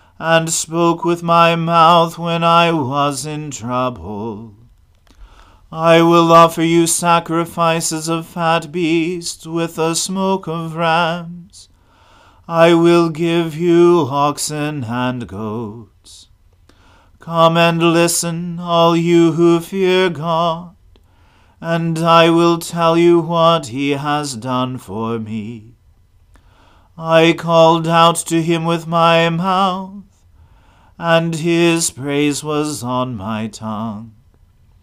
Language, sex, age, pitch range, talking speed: English, male, 40-59, 115-170 Hz, 110 wpm